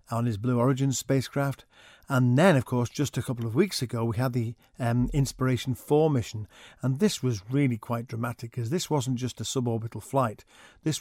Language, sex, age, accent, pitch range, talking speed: English, male, 50-69, British, 120-140 Hz, 190 wpm